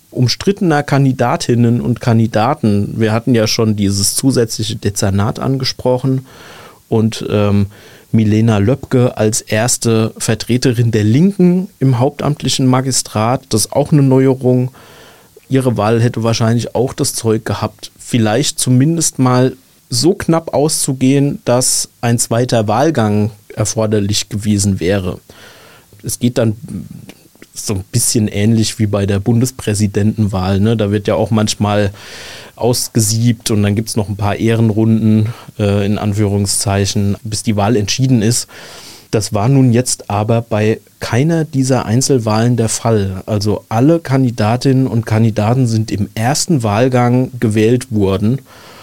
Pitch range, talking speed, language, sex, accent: 105-130 Hz, 130 wpm, German, male, German